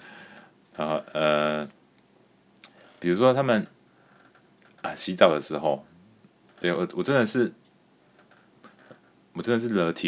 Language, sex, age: Chinese, male, 30-49